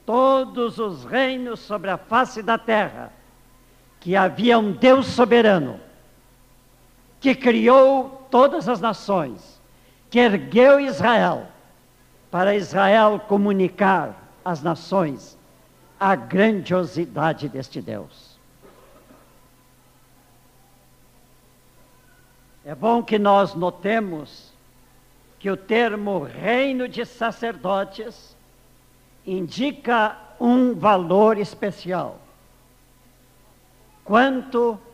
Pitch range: 165-235 Hz